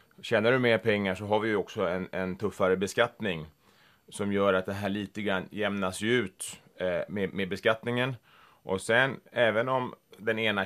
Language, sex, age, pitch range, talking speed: Finnish, male, 30-49, 95-115 Hz, 175 wpm